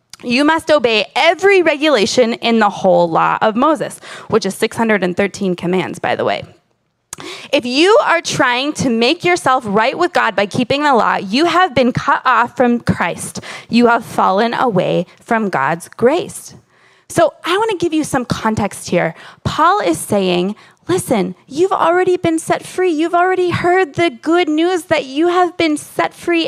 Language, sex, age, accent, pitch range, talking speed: English, female, 20-39, American, 245-345 Hz, 170 wpm